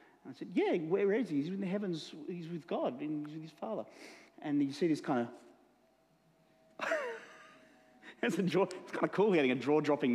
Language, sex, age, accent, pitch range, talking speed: English, male, 40-59, Australian, 170-260 Hz, 175 wpm